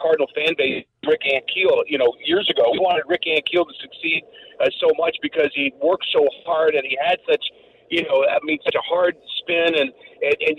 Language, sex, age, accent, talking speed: English, male, 50-69, American, 215 wpm